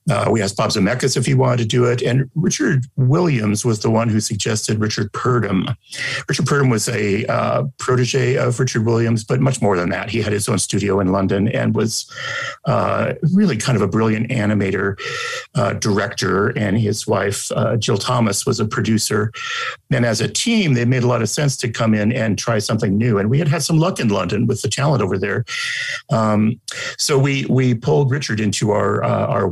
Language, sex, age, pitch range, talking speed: English, male, 50-69, 110-130 Hz, 205 wpm